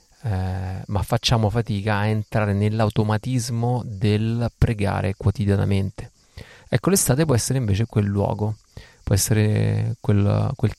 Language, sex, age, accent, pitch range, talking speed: Italian, male, 30-49, native, 100-120 Hz, 115 wpm